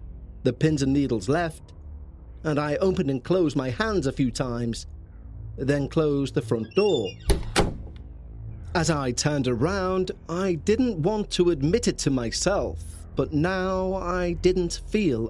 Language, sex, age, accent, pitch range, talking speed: English, male, 30-49, British, 95-160 Hz, 145 wpm